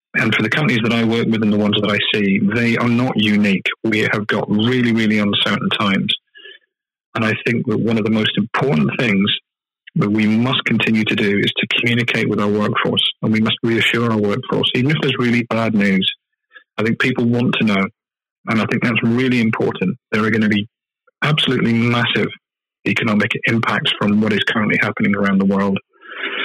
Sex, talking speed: male, 200 wpm